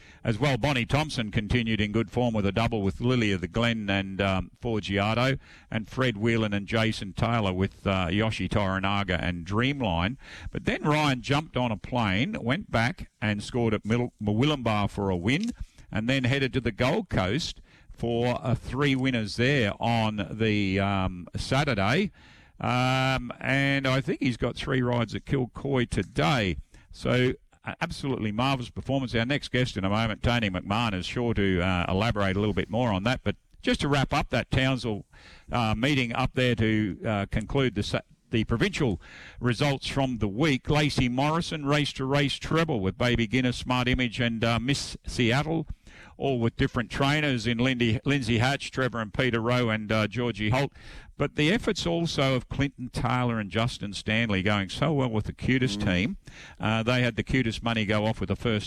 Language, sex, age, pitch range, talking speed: English, male, 50-69, 100-130 Hz, 180 wpm